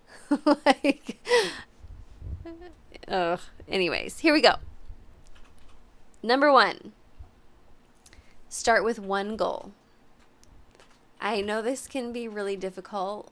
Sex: female